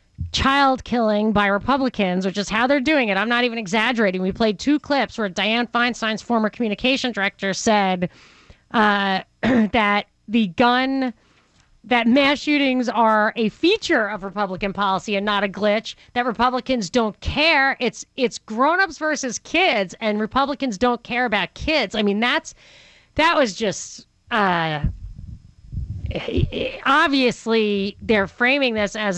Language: English